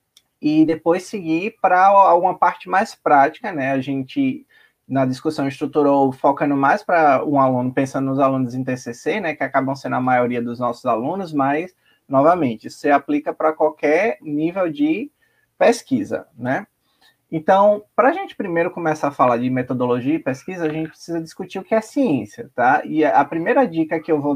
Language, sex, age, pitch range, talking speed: Portuguese, male, 20-39, 145-220 Hz, 175 wpm